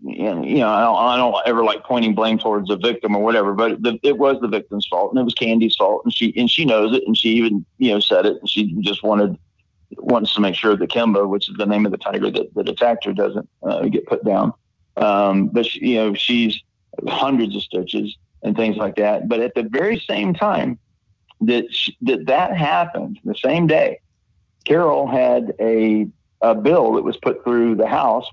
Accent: American